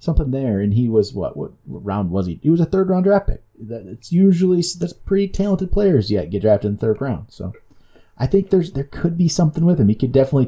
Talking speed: 250 wpm